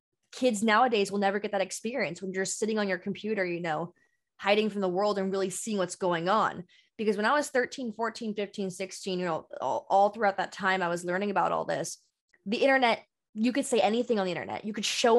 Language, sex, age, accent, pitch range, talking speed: English, female, 20-39, American, 185-245 Hz, 230 wpm